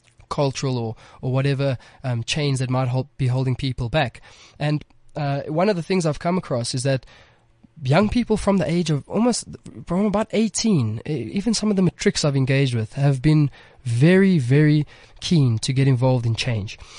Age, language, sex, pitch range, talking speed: 20-39, English, male, 130-170 Hz, 185 wpm